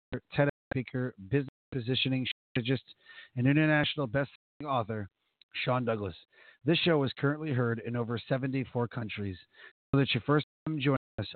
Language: English